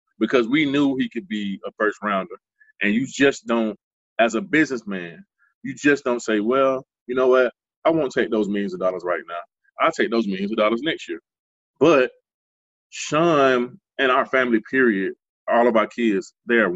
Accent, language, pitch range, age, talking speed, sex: American, English, 105-130 Hz, 20-39, 185 wpm, male